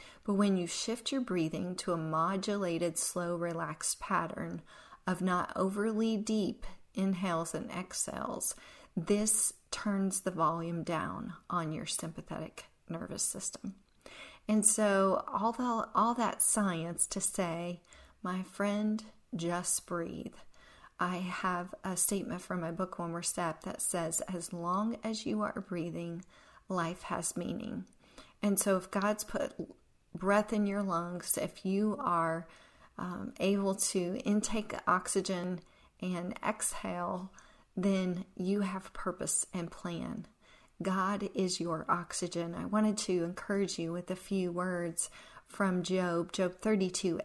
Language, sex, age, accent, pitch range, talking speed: English, female, 40-59, American, 175-205 Hz, 135 wpm